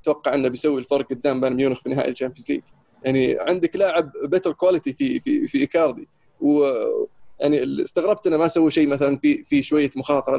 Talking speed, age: 185 wpm, 20-39